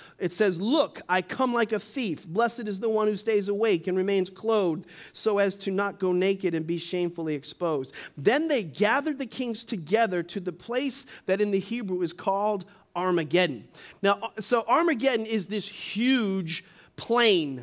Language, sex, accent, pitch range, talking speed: English, male, American, 185-235 Hz, 175 wpm